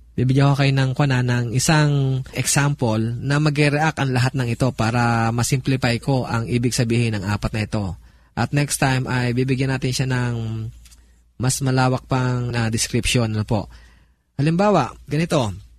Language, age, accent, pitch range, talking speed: Filipino, 20-39, native, 115-155 Hz, 155 wpm